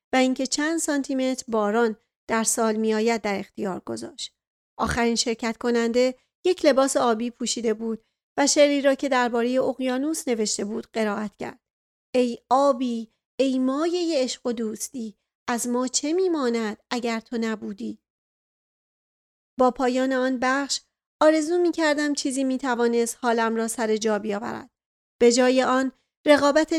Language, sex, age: Persian, female, 40-59